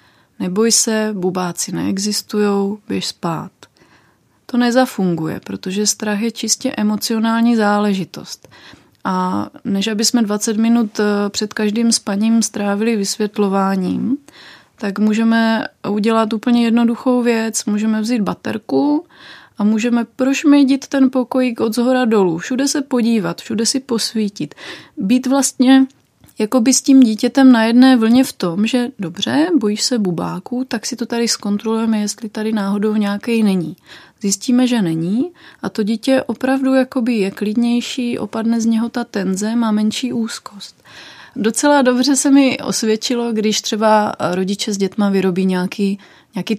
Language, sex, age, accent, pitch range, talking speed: Czech, female, 30-49, native, 205-250 Hz, 135 wpm